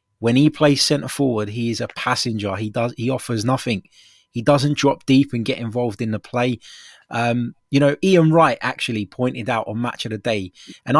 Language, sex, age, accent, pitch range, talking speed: English, male, 20-39, British, 120-150 Hz, 200 wpm